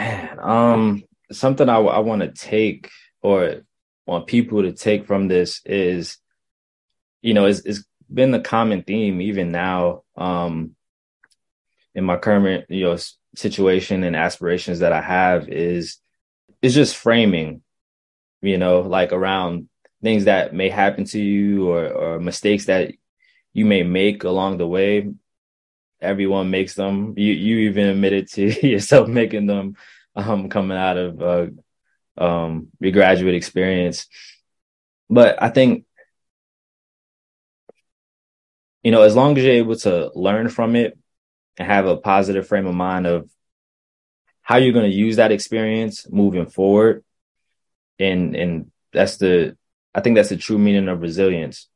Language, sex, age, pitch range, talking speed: English, male, 20-39, 90-105 Hz, 145 wpm